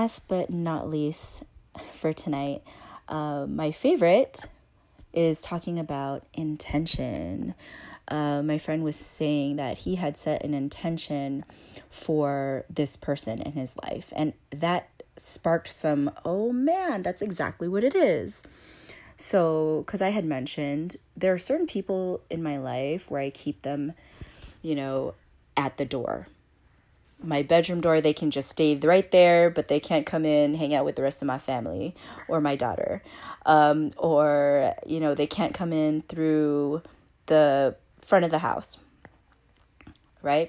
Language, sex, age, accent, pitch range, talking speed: English, female, 30-49, American, 145-175 Hz, 150 wpm